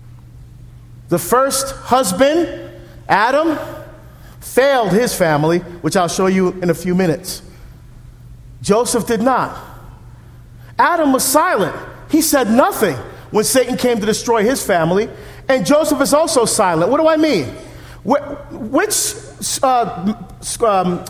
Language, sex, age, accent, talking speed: English, male, 40-59, American, 120 wpm